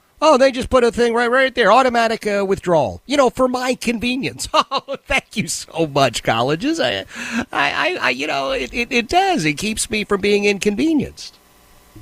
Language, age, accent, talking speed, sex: English, 50-69, American, 190 wpm, male